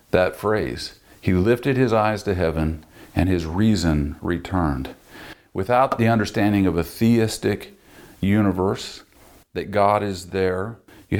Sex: male